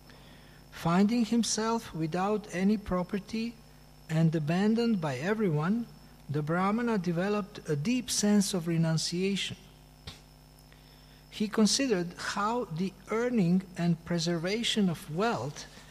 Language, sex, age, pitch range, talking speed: Italian, male, 60-79, 165-215 Hz, 100 wpm